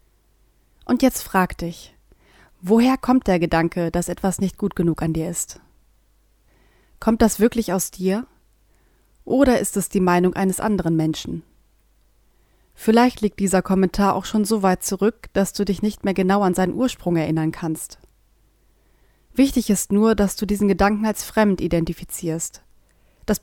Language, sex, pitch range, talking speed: German, female, 175-210 Hz, 155 wpm